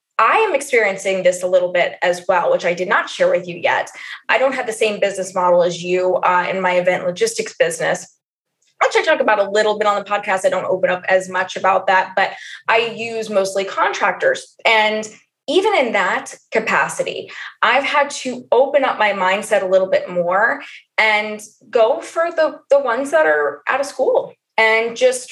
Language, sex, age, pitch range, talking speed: English, female, 20-39, 200-270 Hz, 200 wpm